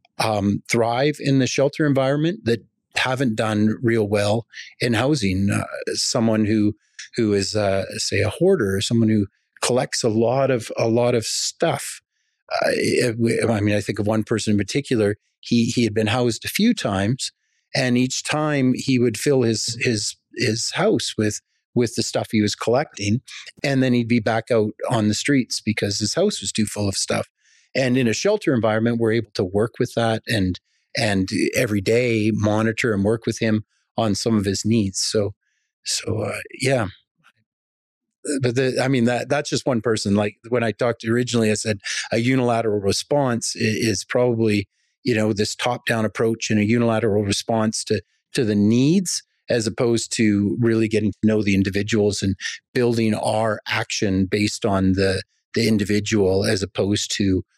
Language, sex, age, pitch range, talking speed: English, male, 30-49, 105-120 Hz, 175 wpm